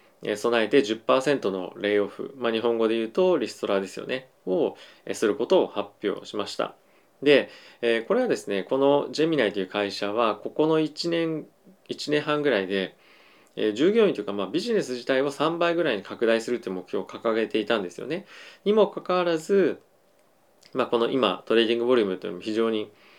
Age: 20-39